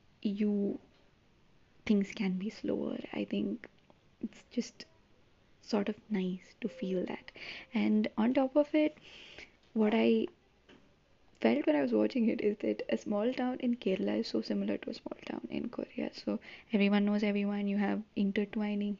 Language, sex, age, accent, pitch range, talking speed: English, female, 20-39, Indian, 200-245 Hz, 160 wpm